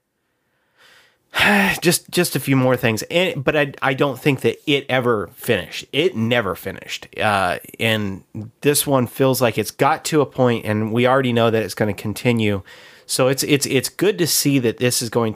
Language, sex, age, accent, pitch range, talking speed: English, male, 30-49, American, 105-125 Hz, 195 wpm